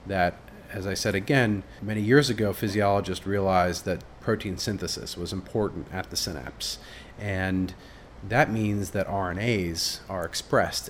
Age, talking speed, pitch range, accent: 30-49, 140 wpm, 90-110 Hz, American